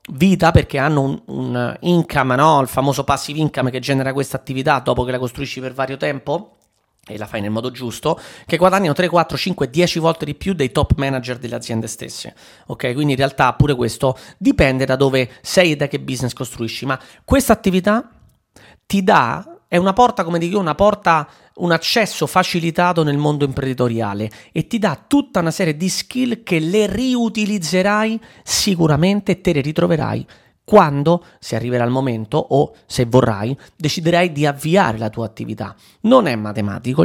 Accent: native